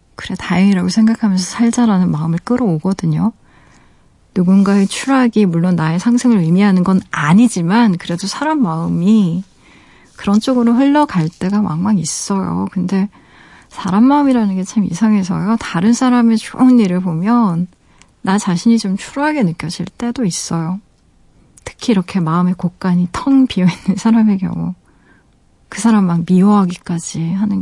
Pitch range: 175-220 Hz